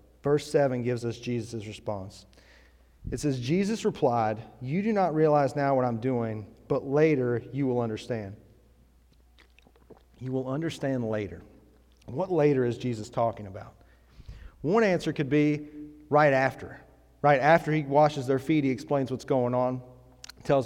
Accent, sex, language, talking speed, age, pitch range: American, male, English, 150 wpm, 40-59, 110-140 Hz